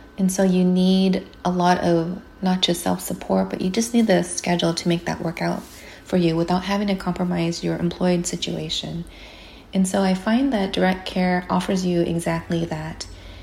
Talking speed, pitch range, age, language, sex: 190 wpm, 170-190 Hz, 30-49, English, female